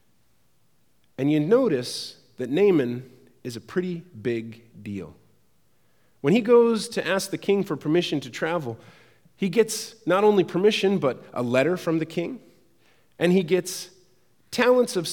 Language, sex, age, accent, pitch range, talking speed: English, male, 40-59, American, 135-215 Hz, 145 wpm